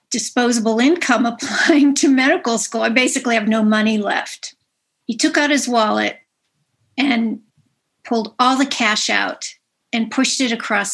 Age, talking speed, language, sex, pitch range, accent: 50-69, 150 wpm, English, female, 220-260 Hz, American